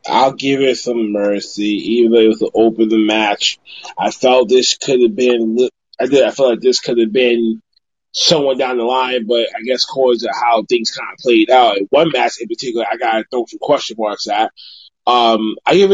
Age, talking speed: 20-39, 205 wpm